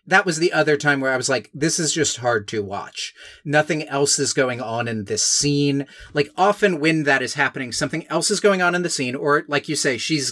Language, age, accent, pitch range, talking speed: English, 30-49, American, 125-155 Hz, 245 wpm